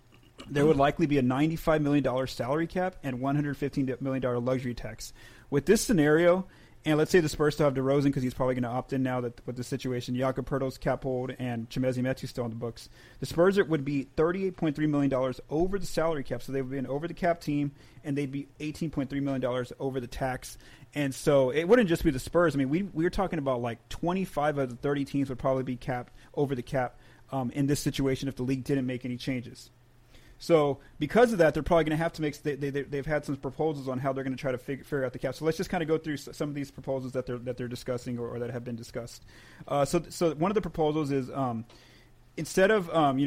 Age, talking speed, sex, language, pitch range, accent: 30-49, 250 wpm, male, English, 130-155 Hz, American